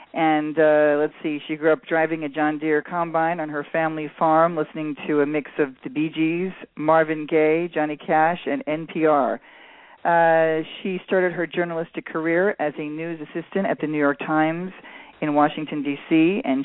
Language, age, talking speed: English, 40-59, 175 wpm